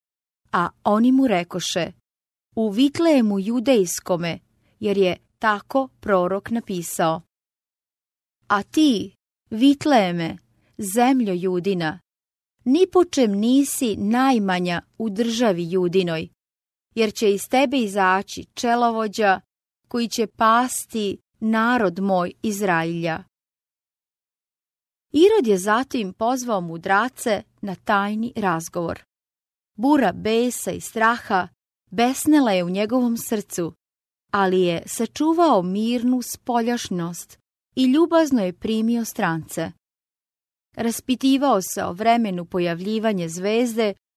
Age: 30-49